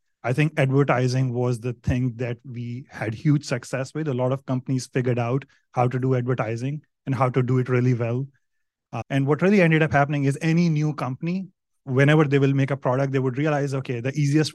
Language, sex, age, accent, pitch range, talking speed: English, male, 30-49, Indian, 120-140 Hz, 215 wpm